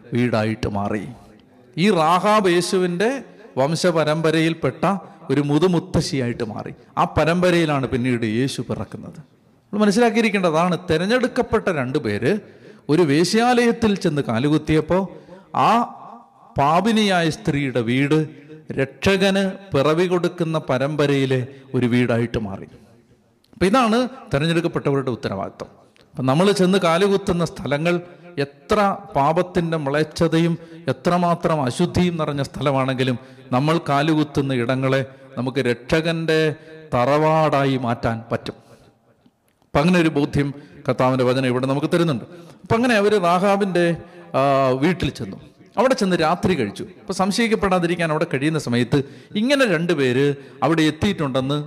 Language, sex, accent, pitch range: Malayalam, male, native, 130-175 Hz